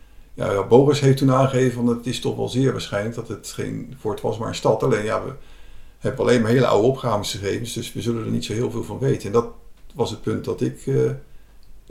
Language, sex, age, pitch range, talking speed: Dutch, male, 50-69, 105-125 Hz, 235 wpm